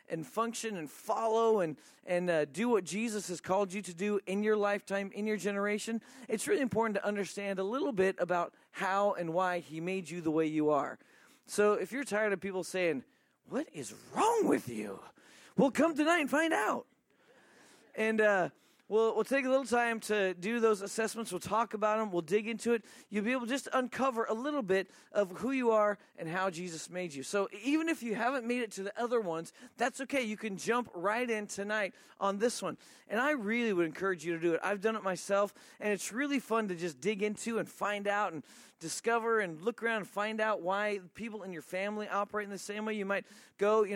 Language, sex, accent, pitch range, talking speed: English, male, American, 180-225 Hz, 225 wpm